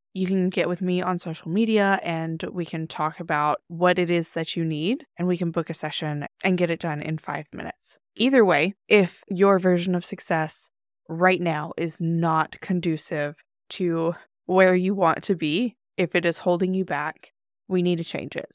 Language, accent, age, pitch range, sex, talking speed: English, American, 20-39, 165-200 Hz, female, 195 wpm